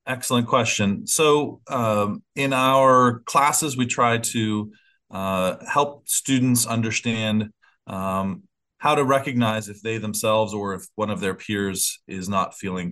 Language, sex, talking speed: English, male, 140 wpm